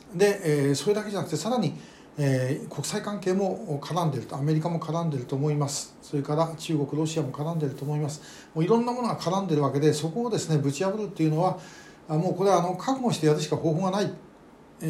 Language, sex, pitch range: Japanese, male, 145-175 Hz